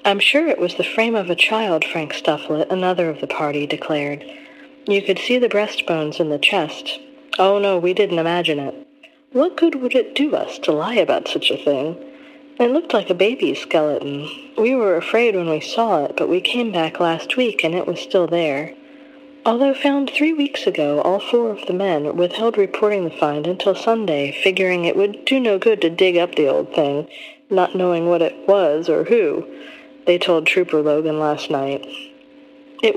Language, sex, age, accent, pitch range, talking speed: English, female, 40-59, American, 170-275 Hz, 195 wpm